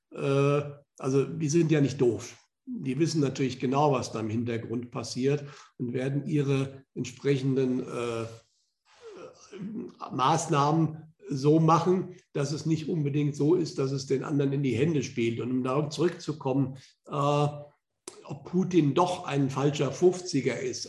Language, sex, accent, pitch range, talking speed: German, male, German, 130-155 Hz, 140 wpm